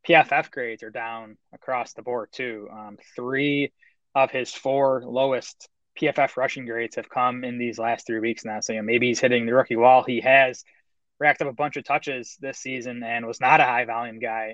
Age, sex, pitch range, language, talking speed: 20-39, male, 120-145 Hz, English, 210 wpm